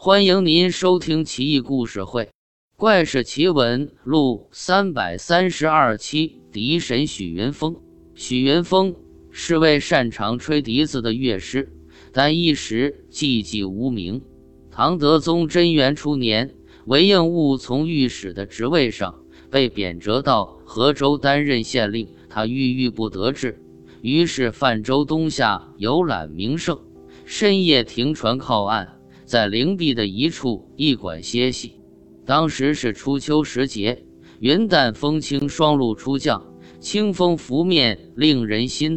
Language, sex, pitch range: Chinese, male, 110-155 Hz